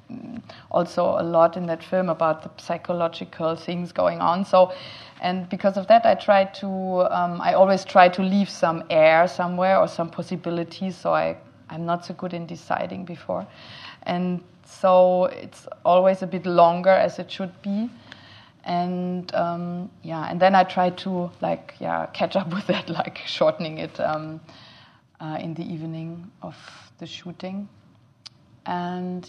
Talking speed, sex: 160 wpm, female